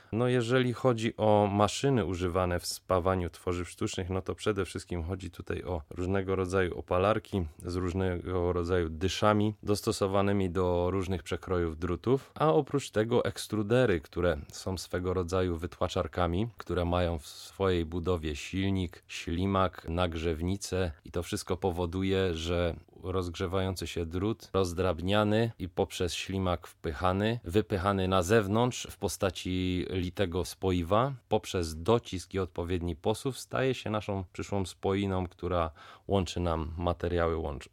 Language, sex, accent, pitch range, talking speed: Polish, male, native, 90-105 Hz, 125 wpm